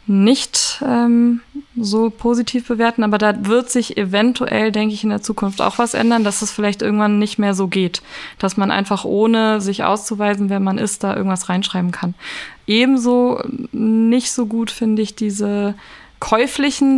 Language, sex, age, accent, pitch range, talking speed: German, female, 20-39, German, 200-230 Hz, 165 wpm